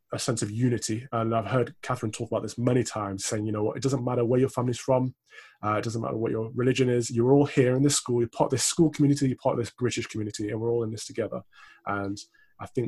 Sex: male